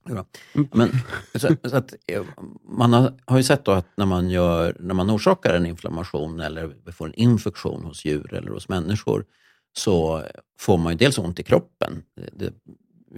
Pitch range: 85-120 Hz